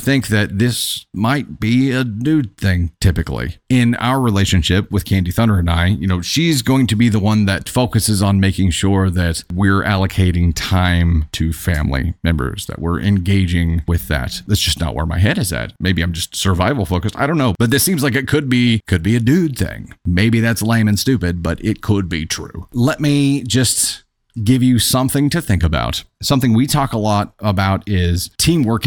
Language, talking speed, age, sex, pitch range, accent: English, 200 wpm, 30-49, male, 90-120 Hz, American